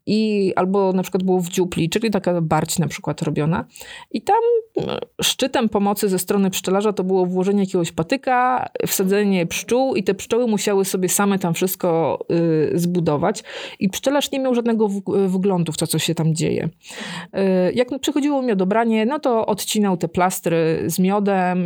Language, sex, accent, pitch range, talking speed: Polish, female, native, 175-220 Hz, 160 wpm